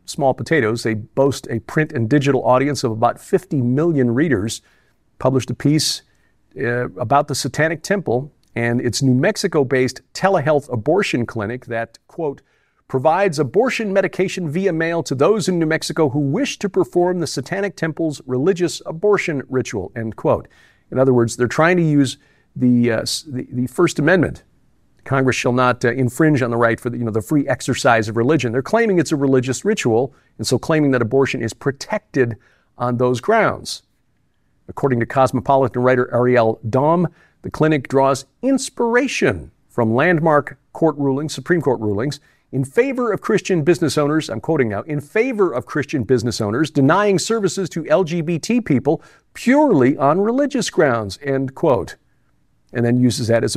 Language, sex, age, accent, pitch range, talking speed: English, male, 50-69, American, 125-165 Hz, 170 wpm